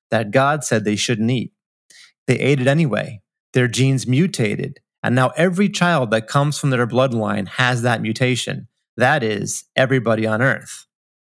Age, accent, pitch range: 30-49, American, 120-155 Hz